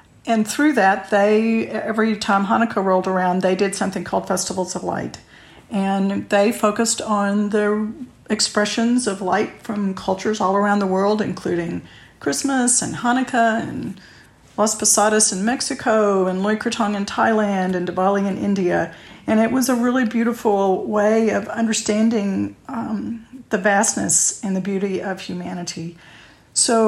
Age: 50-69